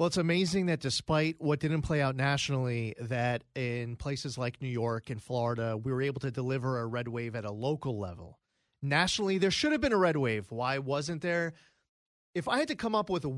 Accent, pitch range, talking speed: American, 135-185 Hz, 215 wpm